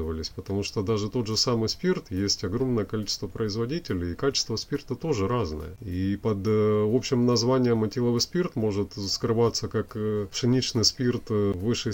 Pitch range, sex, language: 95-125 Hz, male, Russian